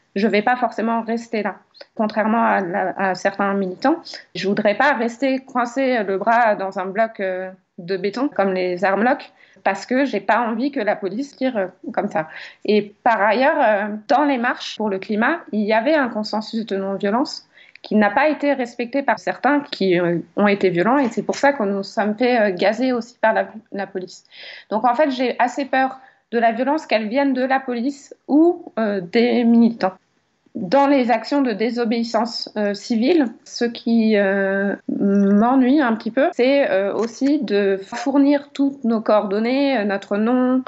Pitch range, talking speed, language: 200-260 Hz, 185 wpm, French